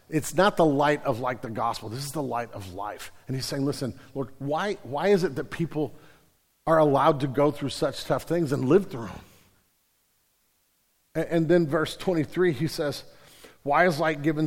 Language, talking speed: English, 200 wpm